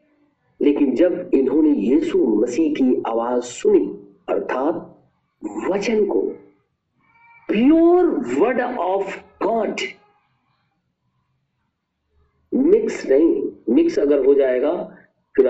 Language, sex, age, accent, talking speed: Hindi, male, 50-69, native, 80 wpm